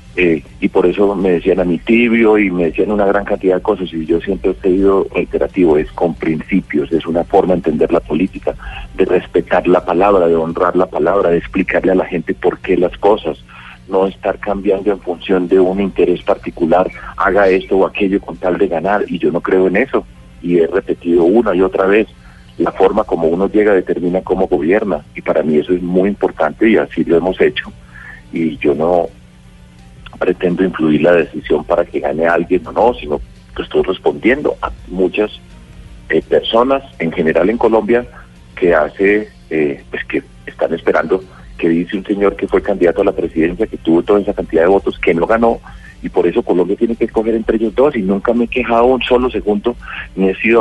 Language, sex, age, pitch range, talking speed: Spanish, male, 40-59, 85-105 Hz, 205 wpm